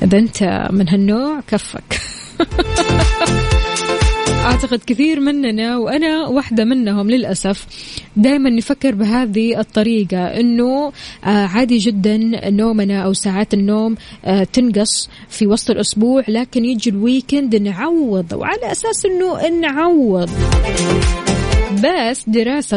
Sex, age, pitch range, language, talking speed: female, 20-39, 195-245 Hz, Arabic, 100 wpm